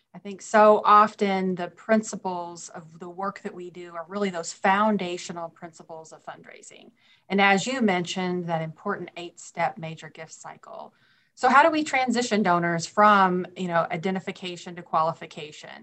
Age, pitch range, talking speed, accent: 30-49, 170-215 Hz, 160 wpm, American